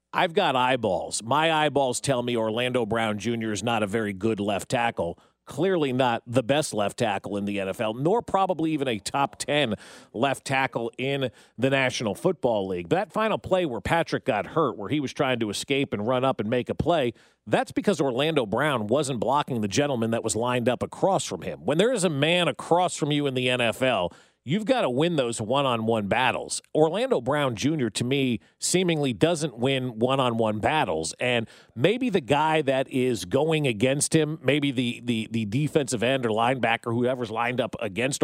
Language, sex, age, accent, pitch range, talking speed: English, male, 40-59, American, 125-170 Hz, 195 wpm